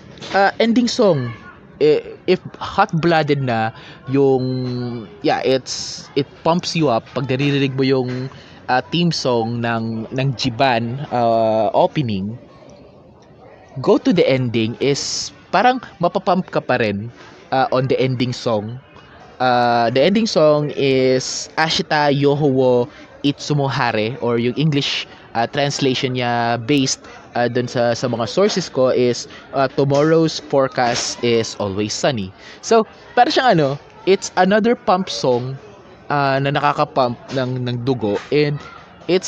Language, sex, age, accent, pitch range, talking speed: Filipino, male, 20-39, native, 120-160 Hz, 130 wpm